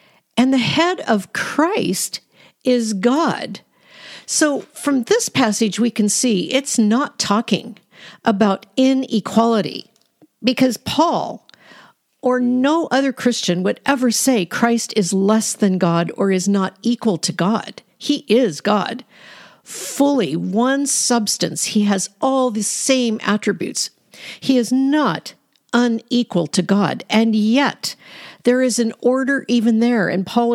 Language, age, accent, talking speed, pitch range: English, 50-69, American, 130 wpm, 205-260 Hz